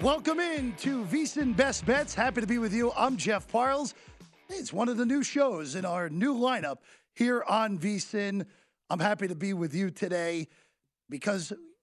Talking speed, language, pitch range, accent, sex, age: 180 wpm, English, 160-230 Hz, American, male, 40-59